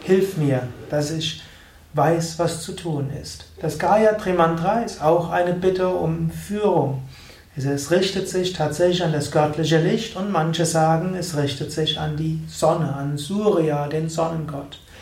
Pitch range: 150-185 Hz